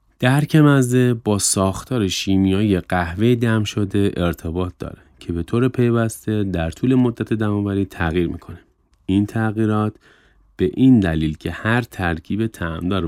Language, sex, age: Persian, male, 30-49